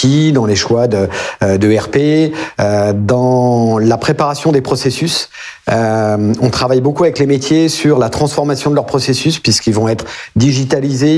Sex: male